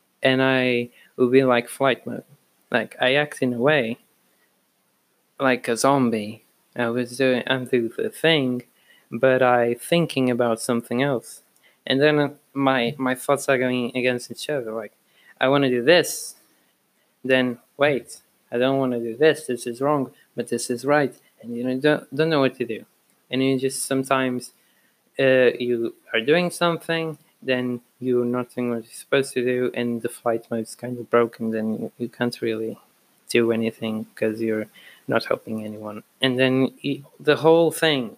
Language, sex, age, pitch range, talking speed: English, male, 20-39, 120-140 Hz, 170 wpm